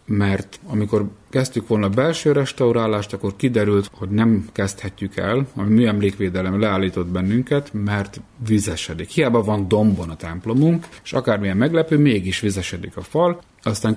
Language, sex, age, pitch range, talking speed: Hungarian, male, 30-49, 95-125 Hz, 140 wpm